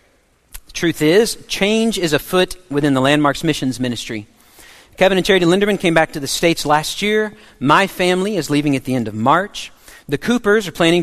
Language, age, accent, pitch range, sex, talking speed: English, 40-59, American, 140-195 Hz, male, 185 wpm